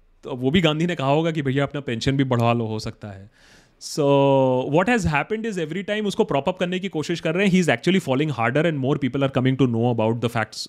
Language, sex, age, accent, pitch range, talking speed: Hindi, male, 30-49, native, 115-155 Hz, 240 wpm